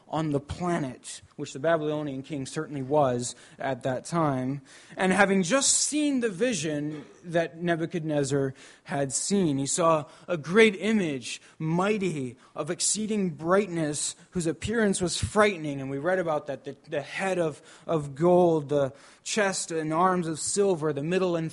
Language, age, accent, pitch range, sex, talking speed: English, 20-39, American, 145-190 Hz, male, 155 wpm